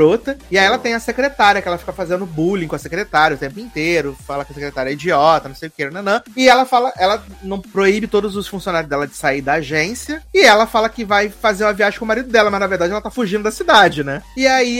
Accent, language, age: Brazilian, Portuguese, 30-49